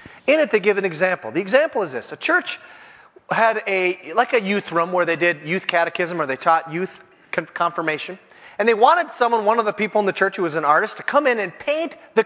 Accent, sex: American, male